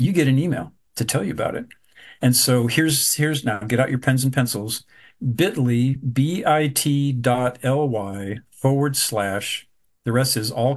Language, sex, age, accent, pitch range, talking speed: English, male, 50-69, American, 115-135 Hz, 165 wpm